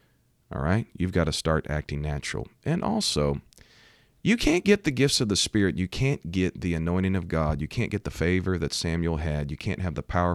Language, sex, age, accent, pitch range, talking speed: English, male, 40-59, American, 75-100 Hz, 220 wpm